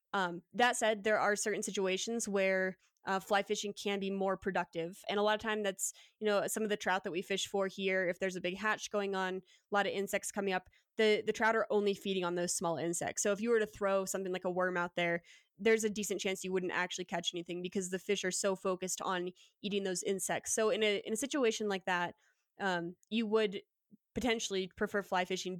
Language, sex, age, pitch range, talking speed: English, female, 20-39, 185-215 Hz, 235 wpm